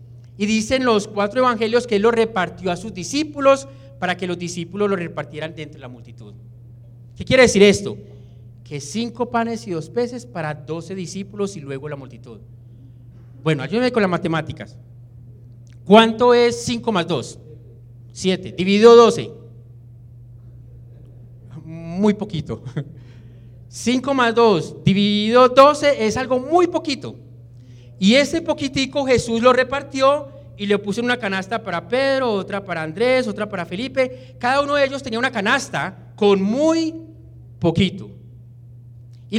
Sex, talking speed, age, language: male, 140 wpm, 40-59, Spanish